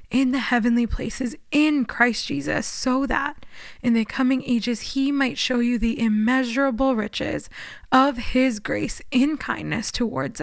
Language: English